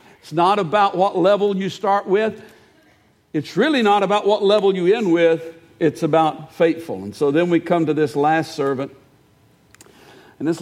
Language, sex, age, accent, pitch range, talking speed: English, male, 60-79, American, 155-205 Hz, 175 wpm